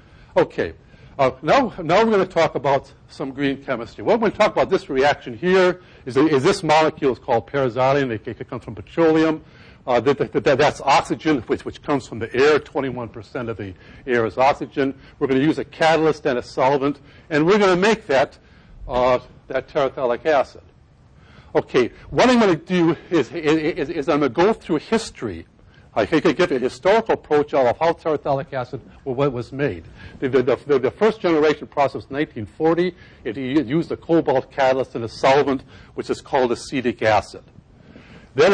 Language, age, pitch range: English, 60-79, 125-165 Hz